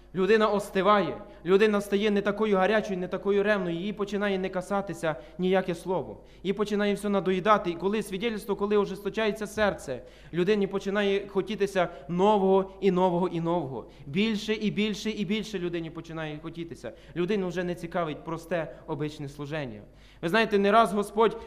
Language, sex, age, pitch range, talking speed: Ukrainian, male, 20-39, 180-210 Hz, 150 wpm